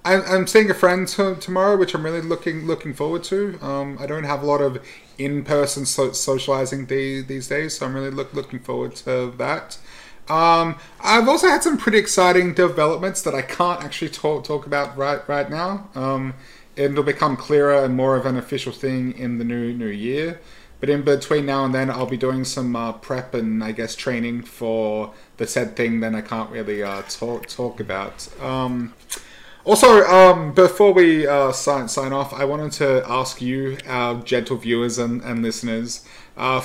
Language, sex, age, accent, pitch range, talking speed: English, male, 30-49, Australian, 120-160 Hz, 190 wpm